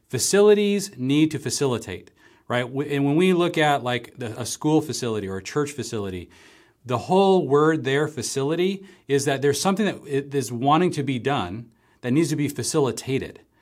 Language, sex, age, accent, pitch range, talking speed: English, male, 40-59, American, 115-150 Hz, 165 wpm